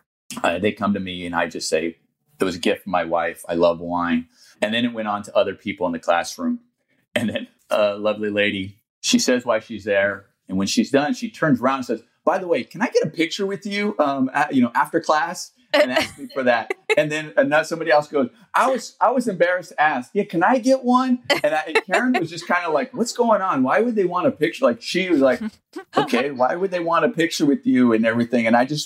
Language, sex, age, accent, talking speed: English, male, 30-49, American, 255 wpm